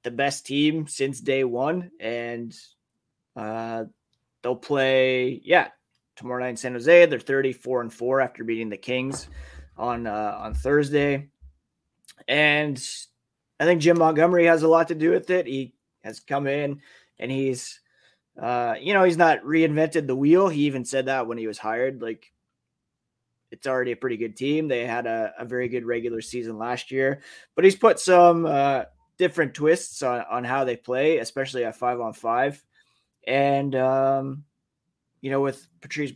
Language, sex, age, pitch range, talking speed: English, male, 20-39, 120-145 Hz, 170 wpm